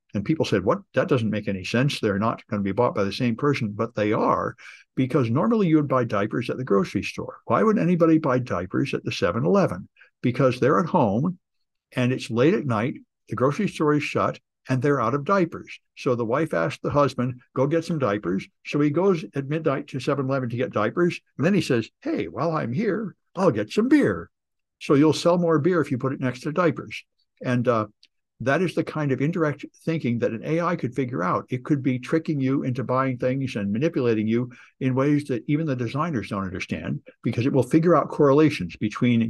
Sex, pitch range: male, 120-155 Hz